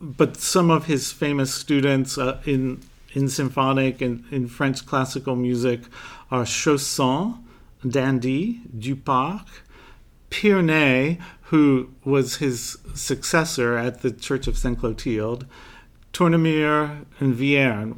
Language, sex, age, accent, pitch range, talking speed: English, male, 40-59, American, 120-145 Hz, 110 wpm